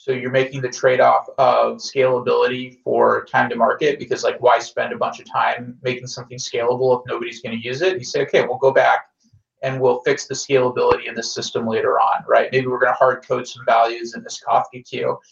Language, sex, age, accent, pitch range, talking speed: English, male, 30-49, American, 125-195 Hz, 230 wpm